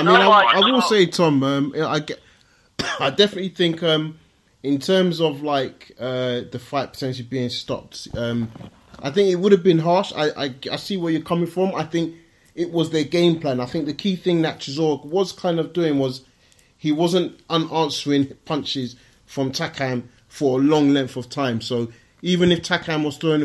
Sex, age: male, 30-49